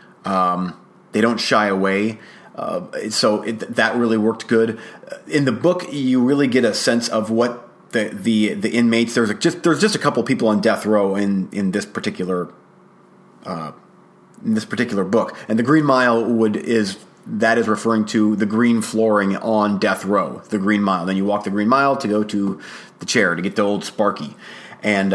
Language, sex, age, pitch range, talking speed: English, male, 30-49, 105-125 Hz, 195 wpm